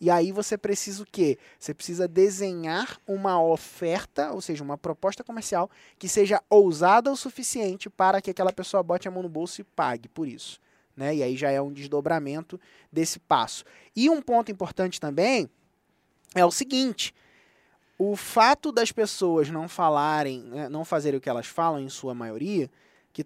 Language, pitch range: Portuguese, 155-215 Hz